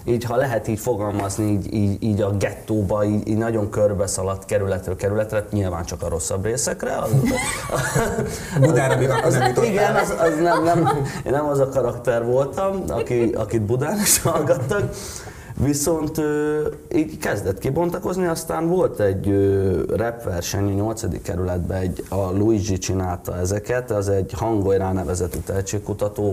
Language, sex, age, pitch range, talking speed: Hungarian, male, 30-49, 95-115 Hz, 135 wpm